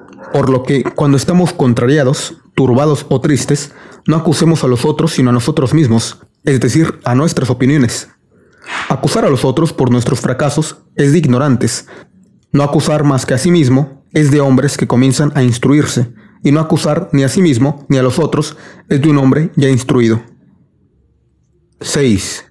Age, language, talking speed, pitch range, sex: 30-49, Spanish, 175 wpm, 120-150 Hz, male